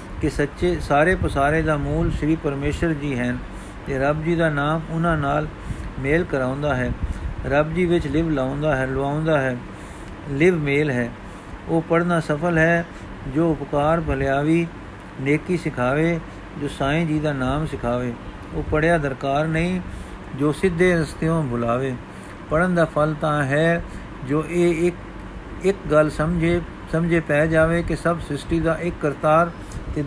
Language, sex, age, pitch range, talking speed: Punjabi, male, 50-69, 140-165 Hz, 150 wpm